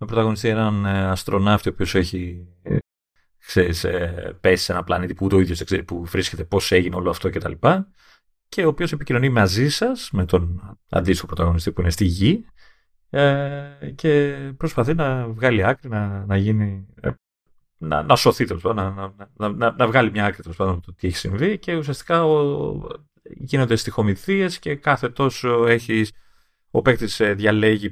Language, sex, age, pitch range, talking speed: Greek, male, 30-49, 95-135 Hz, 160 wpm